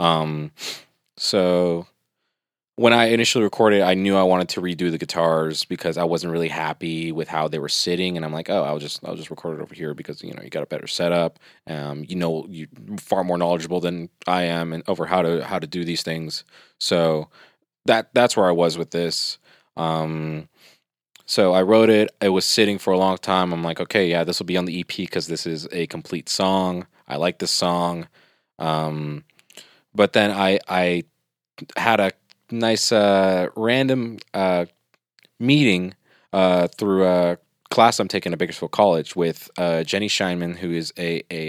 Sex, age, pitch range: male, 20-39, 80-95 Hz